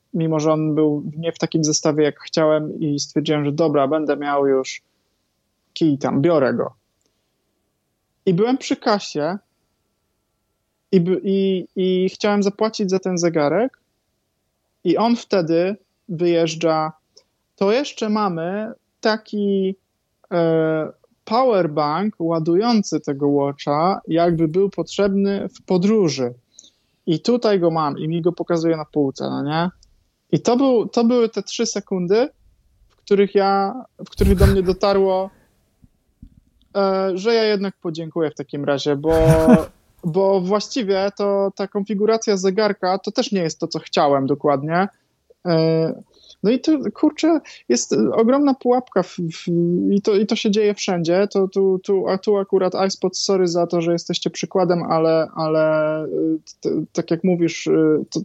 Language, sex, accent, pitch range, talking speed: Polish, male, native, 160-200 Hz, 140 wpm